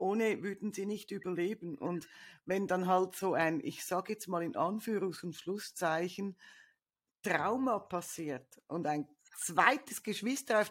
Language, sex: German, female